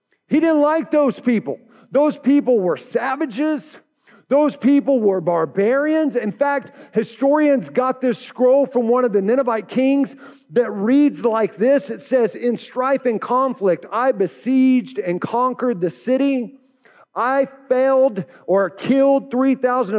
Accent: American